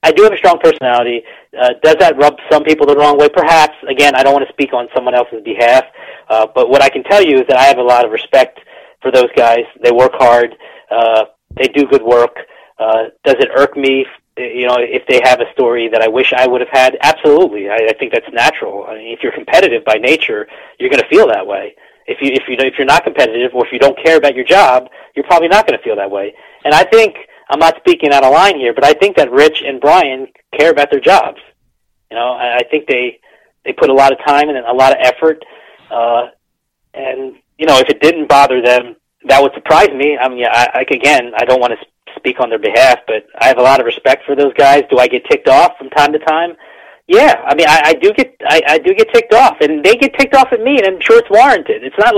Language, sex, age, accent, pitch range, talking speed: English, male, 40-59, American, 125-200 Hz, 260 wpm